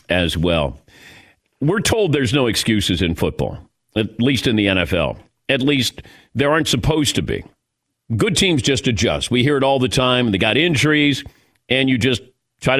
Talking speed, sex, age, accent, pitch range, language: 180 wpm, male, 50-69, American, 100-130 Hz, English